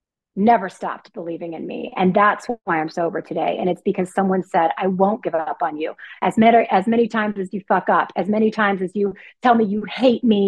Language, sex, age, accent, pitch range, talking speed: English, female, 30-49, American, 185-230 Hz, 235 wpm